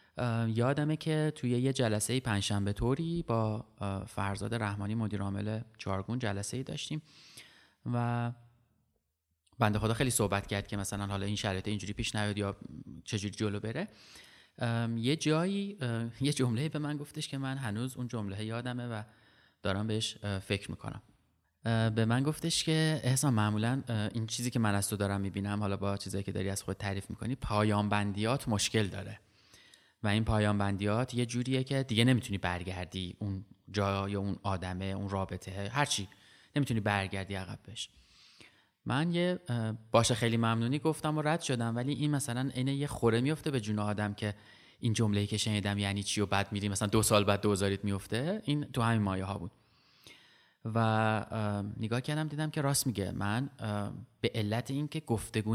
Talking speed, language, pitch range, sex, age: 170 wpm, Persian, 100-125 Hz, male, 30-49